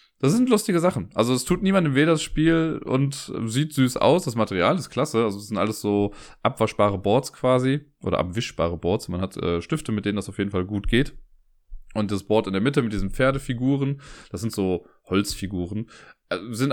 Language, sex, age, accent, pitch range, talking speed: German, male, 20-39, German, 100-130 Hz, 200 wpm